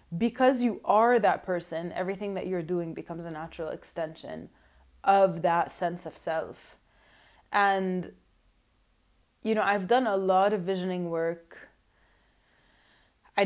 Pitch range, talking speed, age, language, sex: 170-205 Hz, 130 wpm, 20-39, English, female